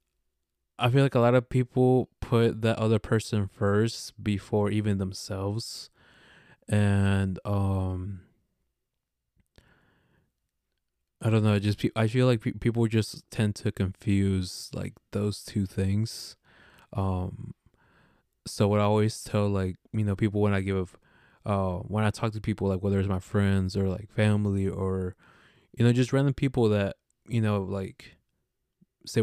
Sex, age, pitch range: male, 20-39, 95-110 Hz